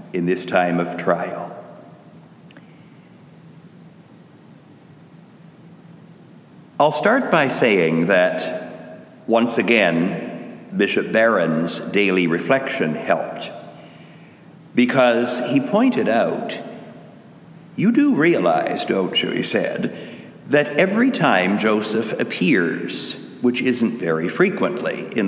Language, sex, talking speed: English, male, 90 wpm